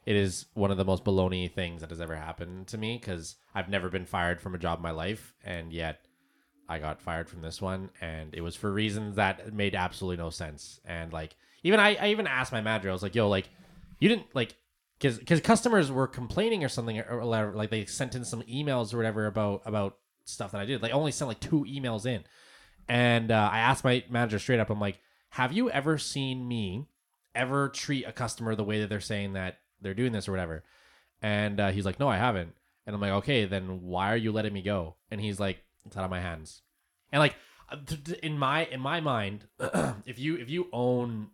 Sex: male